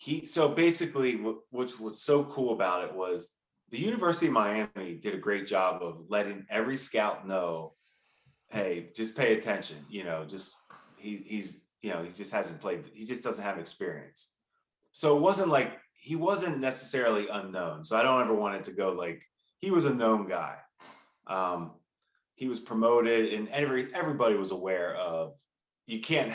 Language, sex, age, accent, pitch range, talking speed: English, male, 30-49, American, 95-130 Hz, 175 wpm